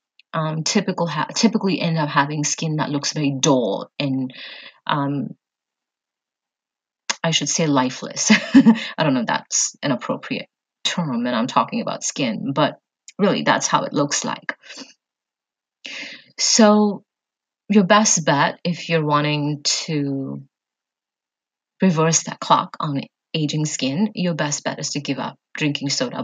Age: 30-49